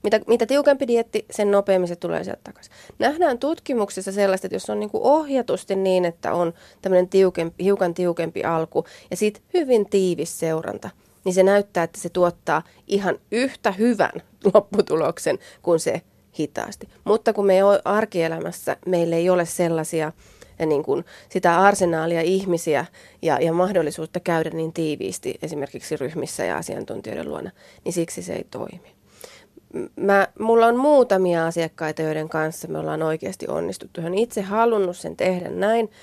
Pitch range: 165-200 Hz